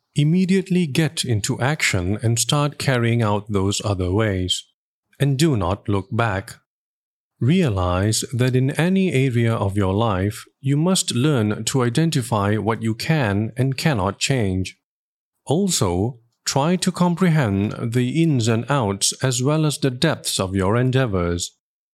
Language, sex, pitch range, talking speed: English, male, 100-145 Hz, 140 wpm